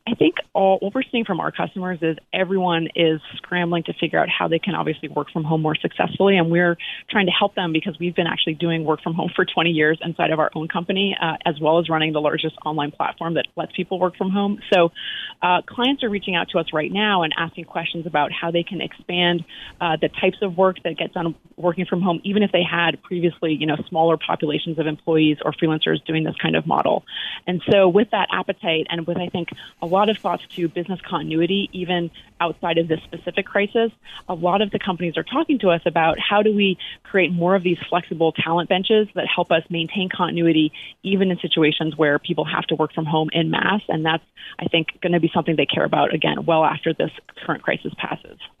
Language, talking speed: English, 230 wpm